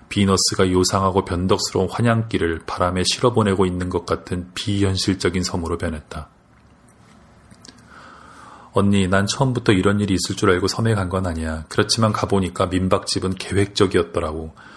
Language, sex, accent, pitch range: Korean, male, native, 90-105 Hz